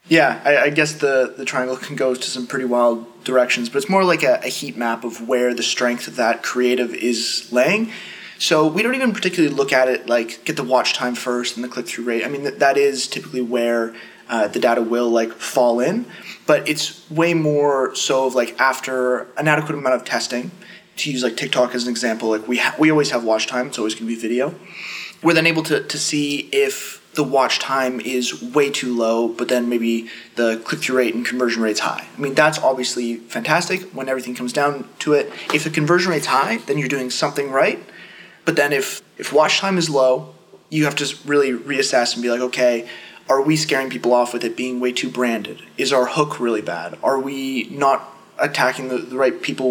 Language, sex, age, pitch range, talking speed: English, male, 20-39, 120-150 Hz, 220 wpm